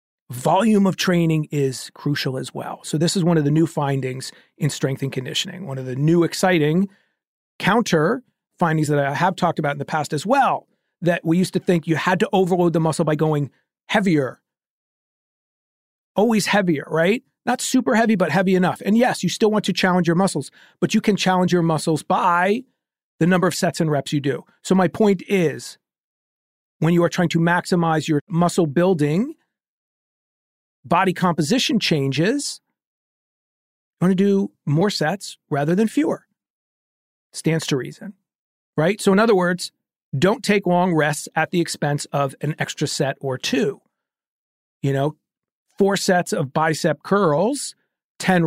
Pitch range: 155-195 Hz